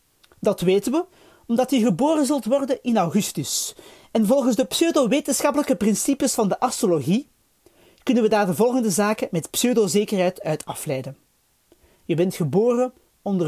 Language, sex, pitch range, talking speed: Dutch, male, 195-275 Hz, 140 wpm